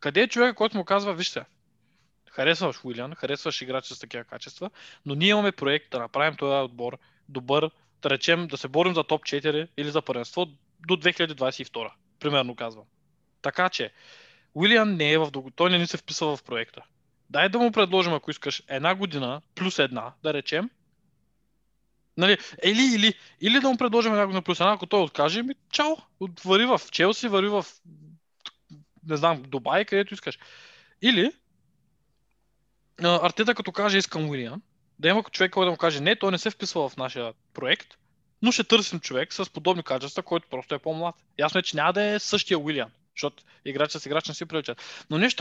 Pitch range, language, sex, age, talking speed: 145-195 Hz, Bulgarian, male, 20-39, 180 wpm